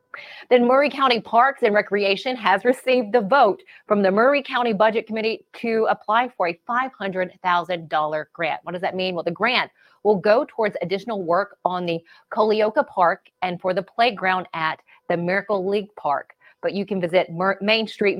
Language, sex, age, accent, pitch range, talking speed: English, female, 30-49, American, 180-235 Hz, 175 wpm